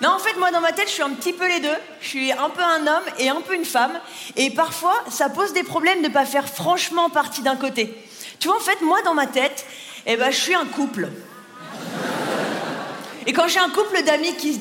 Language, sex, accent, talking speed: French, female, French, 250 wpm